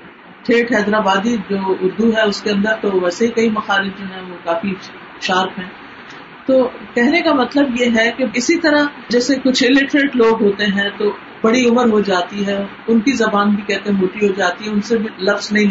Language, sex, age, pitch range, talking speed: Urdu, female, 50-69, 205-280 Hz, 205 wpm